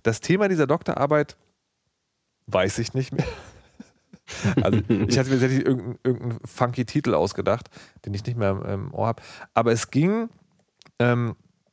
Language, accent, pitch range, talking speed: German, German, 120-160 Hz, 145 wpm